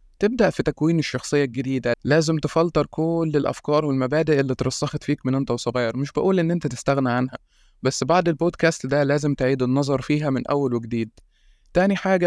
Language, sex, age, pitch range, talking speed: Arabic, male, 20-39, 130-155 Hz, 170 wpm